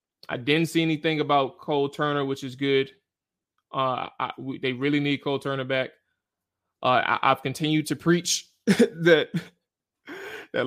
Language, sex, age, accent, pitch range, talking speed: English, male, 20-39, American, 130-145 Hz, 150 wpm